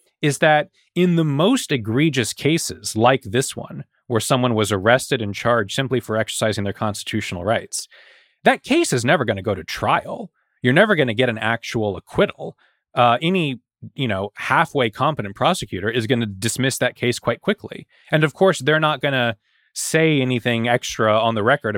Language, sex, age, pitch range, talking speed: English, male, 30-49, 110-145 Hz, 185 wpm